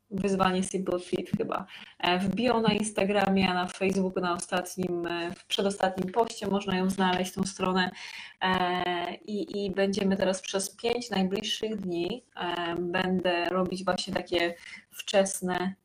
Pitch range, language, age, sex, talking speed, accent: 180-210 Hz, Polish, 20-39, female, 130 wpm, native